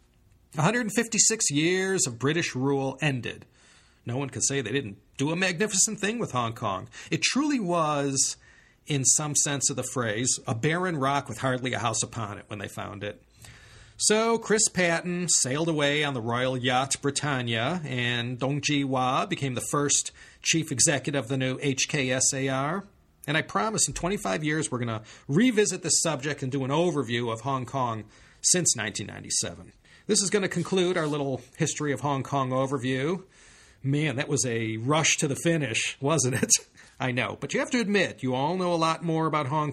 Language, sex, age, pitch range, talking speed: English, male, 40-59, 120-160 Hz, 185 wpm